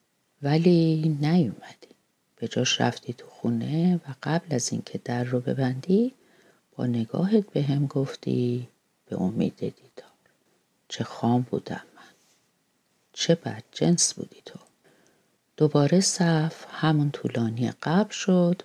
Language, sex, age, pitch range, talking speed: Persian, female, 40-59, 125-180 Hz, 115 wpm